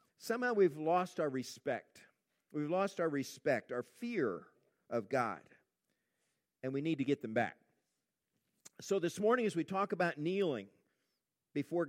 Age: 50-69